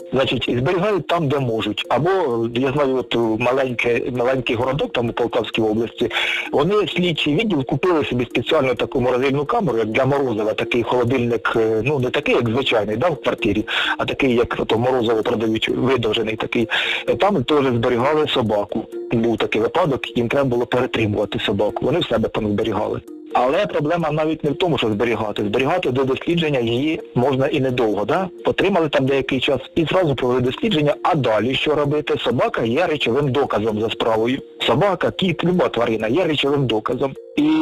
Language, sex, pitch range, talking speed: Ukrainian, male, 115-145 Hz, 165 wpm